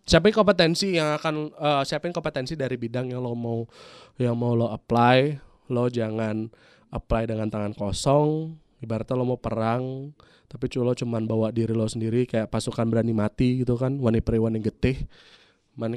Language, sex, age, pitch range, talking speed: Indonesian, male, 20-39, 115-150 Hz, 160 wpm